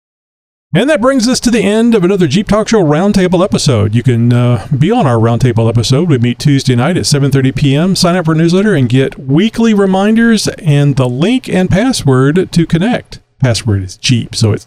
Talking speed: 205 wpm